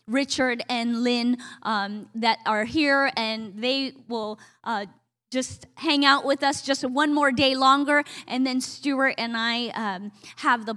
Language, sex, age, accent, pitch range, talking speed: English, female, 20-39, American, 215-270 Hz, 160 wpm